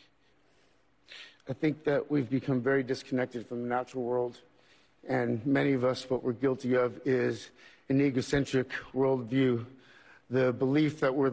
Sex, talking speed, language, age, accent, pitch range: male, 145 wpm, English, 50-69, American, 130-155 Hz